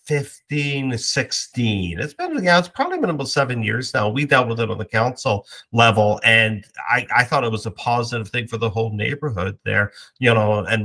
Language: English